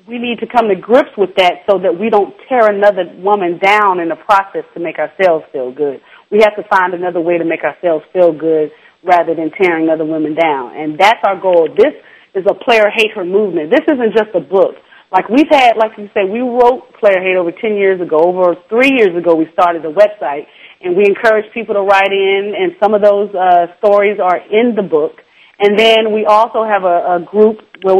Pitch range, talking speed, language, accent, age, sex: 185-230 Hz, 225 wpm, English, American, 30-49, female